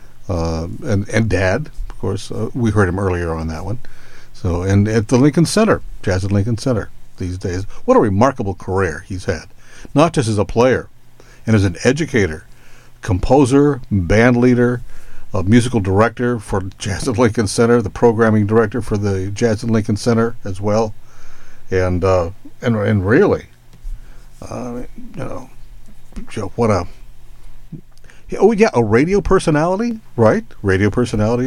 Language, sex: English, male